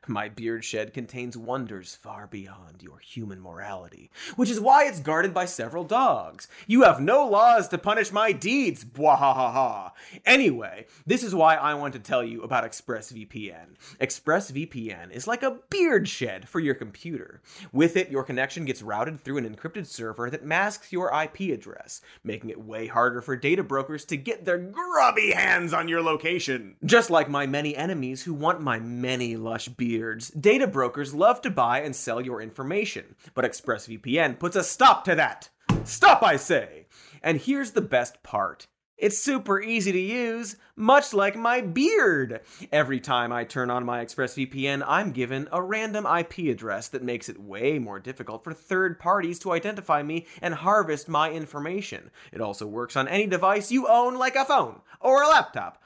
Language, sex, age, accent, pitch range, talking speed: English, male, 30-49, American, 125-200 Hz, 175 wpm